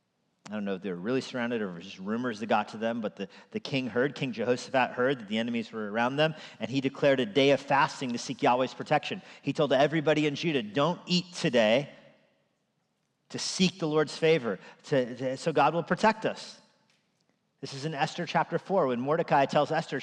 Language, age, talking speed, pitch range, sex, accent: English, 40-59, 220 wpm, 135-175 Hz, male, American